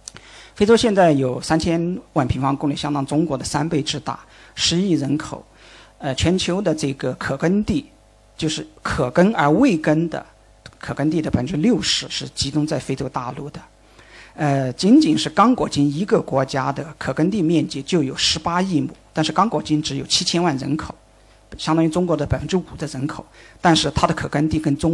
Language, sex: Chinese, male